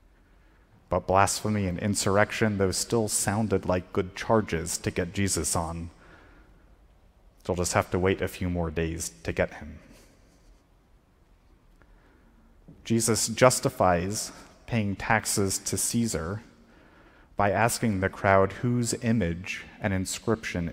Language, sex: English, male